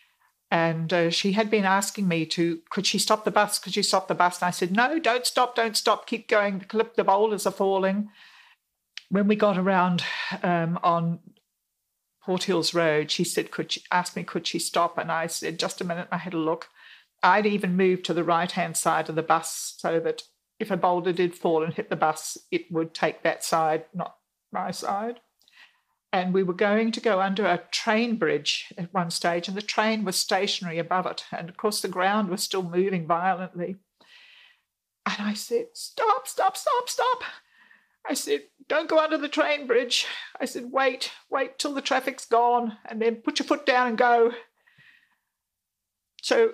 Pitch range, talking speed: 180-240 Hz, 190 wpm